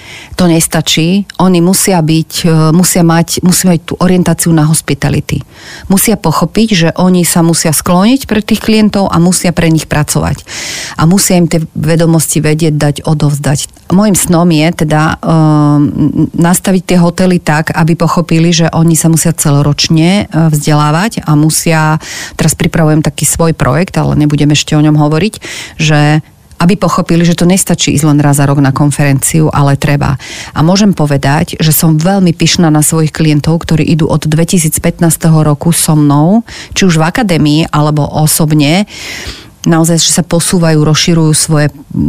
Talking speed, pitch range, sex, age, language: 155 wpm, 150-170 Hz, female, 40-59, Slovak